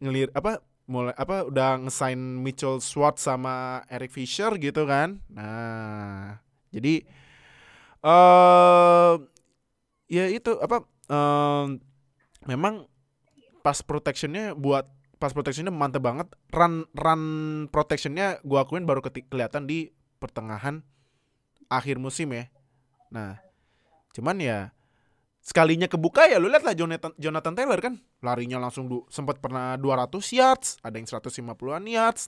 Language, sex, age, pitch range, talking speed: Indonesian, male, 20-39, 125-160 Hz, 120 wpm